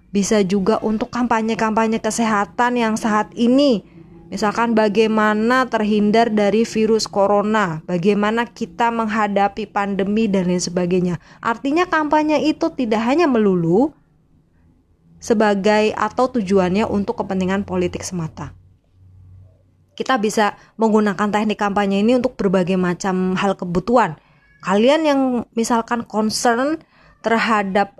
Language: Indonesian